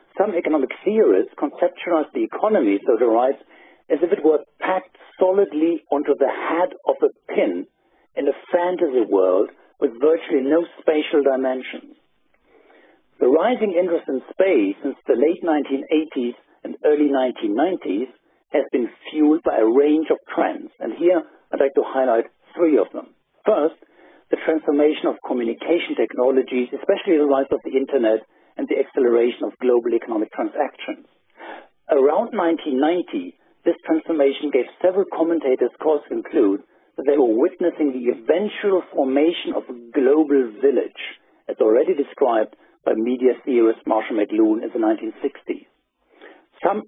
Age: 60-79